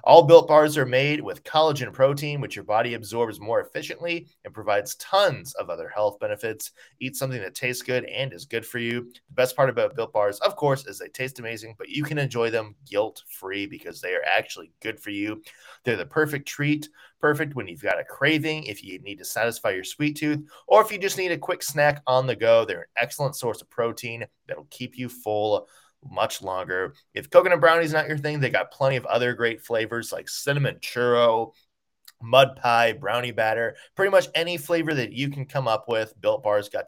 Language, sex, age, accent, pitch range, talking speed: English, male, 20-39, American, 120-155 Hz, 215 wpm